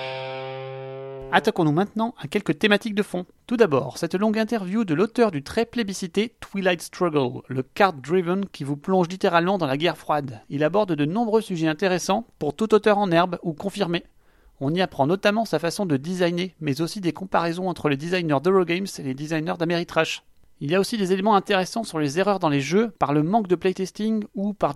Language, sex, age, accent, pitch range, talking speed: French, male, 30-49, French, 150-200 Hz, 200 wpm